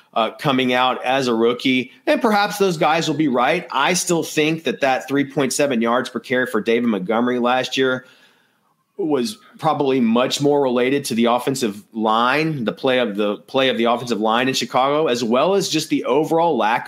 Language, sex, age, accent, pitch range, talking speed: English, male, 30-49, American, 120-160 Hz, 190 wpm